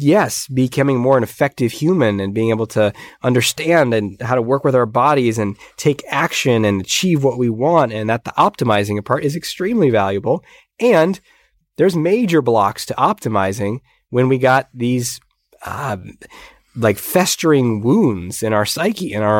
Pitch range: 110-140 Hz